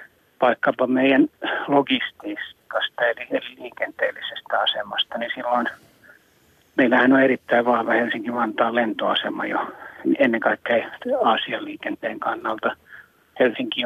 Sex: male